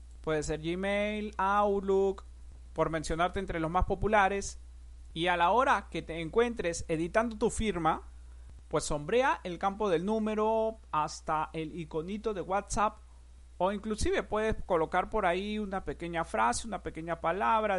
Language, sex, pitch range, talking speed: Spanish, male, 155-215 Hz, 145 wpm